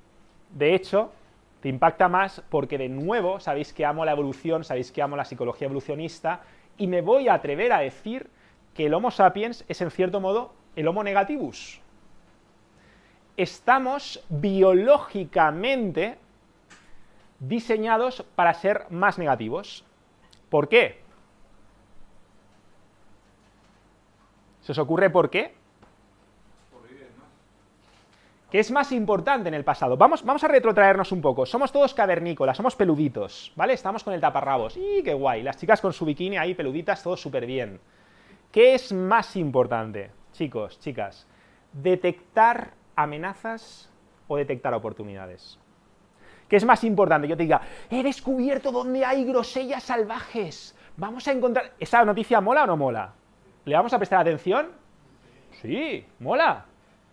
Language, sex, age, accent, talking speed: English, male, 30-49, Spanish, 135 wpm